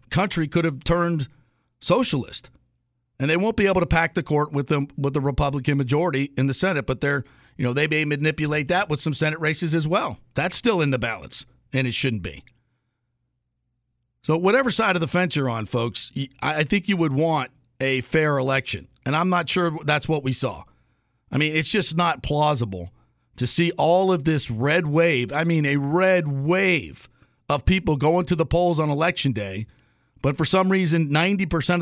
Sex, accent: male, American